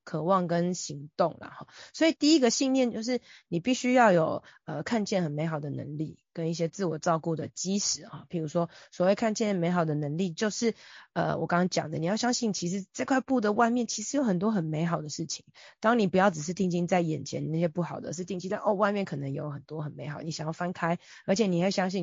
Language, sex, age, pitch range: Chinese, female, 20-39, 165-215 Hz